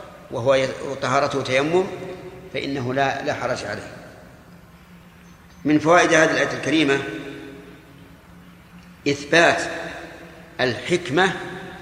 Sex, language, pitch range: male, Arabic, 135-165 Hz